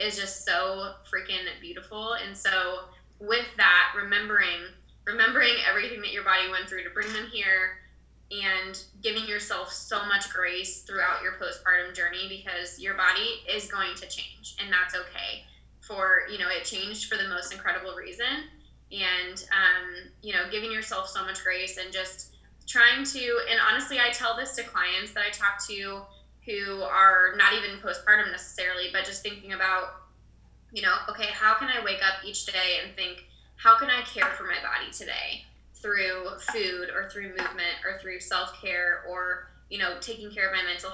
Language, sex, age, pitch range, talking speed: English, female, 20-39, 185-210 Hz, 175 wpm